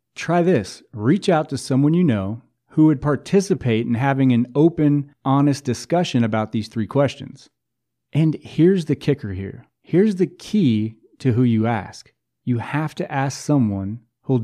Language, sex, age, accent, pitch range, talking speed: English, male, 30-49, American, 115-155 Hz, 160 wpm